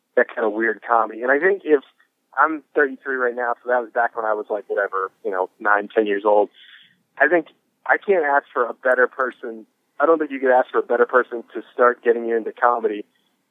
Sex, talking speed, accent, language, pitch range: male, 235 wpm, American, English, 120-145 Hz